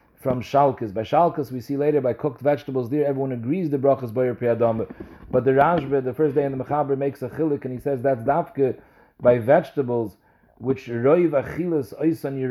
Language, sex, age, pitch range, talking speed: English, male, 40-59, 120-145 Hz, 180 wpm